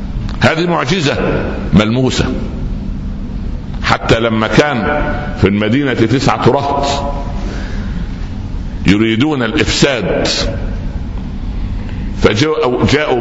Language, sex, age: Arabic, male, 60-79